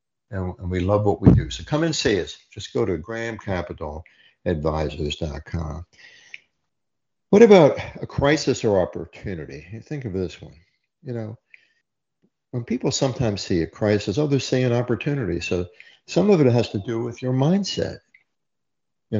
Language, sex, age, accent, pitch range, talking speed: English, male, 60-79, American, 90-125 Hz, 155 wpm